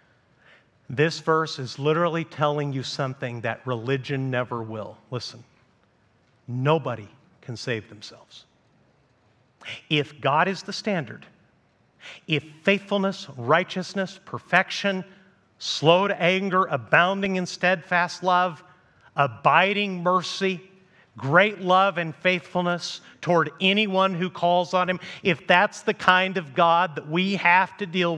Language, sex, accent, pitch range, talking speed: English, male, American, 170-225 Hz, 115 wpm